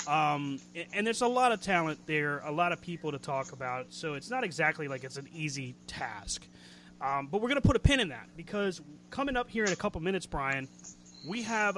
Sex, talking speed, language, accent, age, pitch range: male, 225 wpm, English, American, 30-49, 130-185 Hz